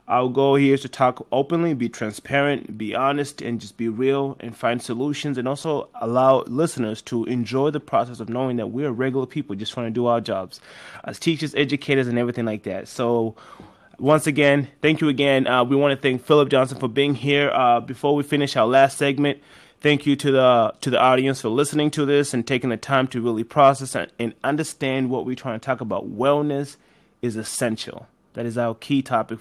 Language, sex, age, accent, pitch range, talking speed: English, male, 30-49, American, 115-140 Hz, 210 wpm